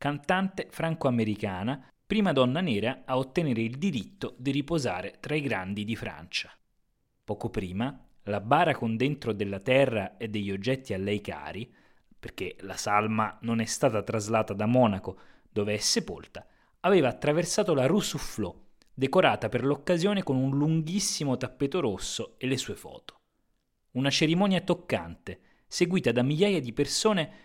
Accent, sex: native, male